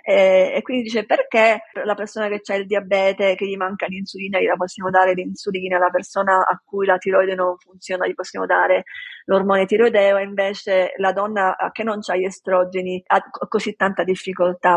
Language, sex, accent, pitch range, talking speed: Italian, female, native, 190-230 Hz, 175 wpm